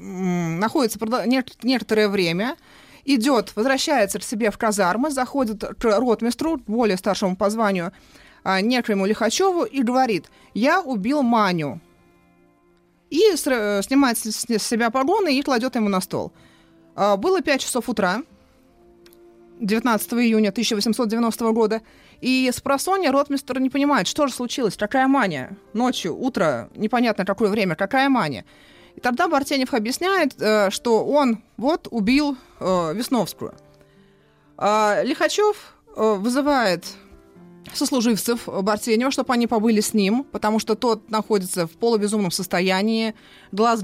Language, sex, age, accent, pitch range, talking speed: Russian, female, 30-49, native, 195-255 Hz, 120 wpm